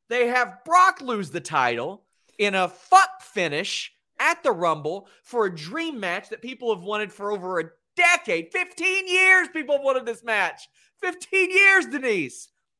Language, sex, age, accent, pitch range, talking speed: English, male, 30-49, American, 185-290 Hz, 165 wpm